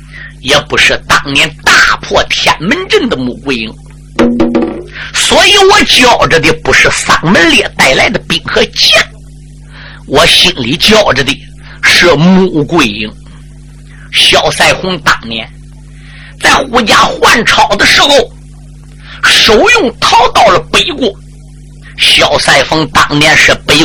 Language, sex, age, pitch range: Chinese, male, 50-69, 145-220 Hz